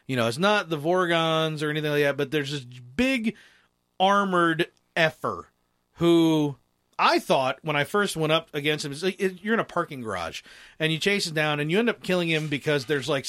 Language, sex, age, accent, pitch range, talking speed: English, male, 40-59, American, 140-175 Hz, 210 wpm